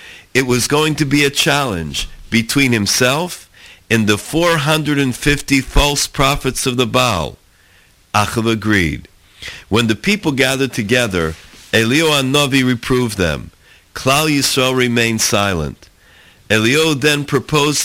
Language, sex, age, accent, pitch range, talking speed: English, male, 50-69, American, 110-145 Hz, 120 wpm